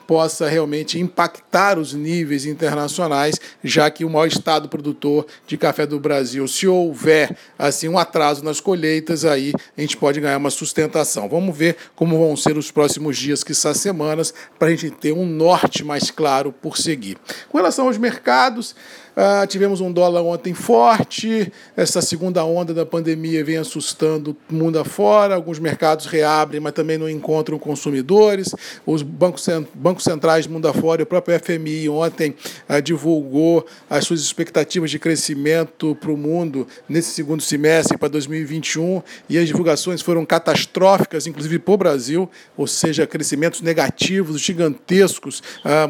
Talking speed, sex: 160 wpm, male